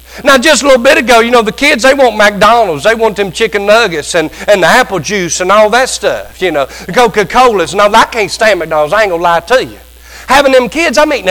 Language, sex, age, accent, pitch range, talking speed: English, male, 50-69, American, 215-280 Hz, 260 wpm